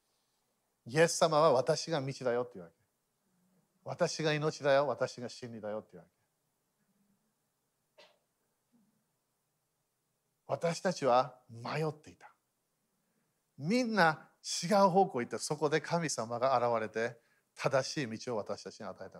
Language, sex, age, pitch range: Japanese, male, 50-69, 130-190 Hz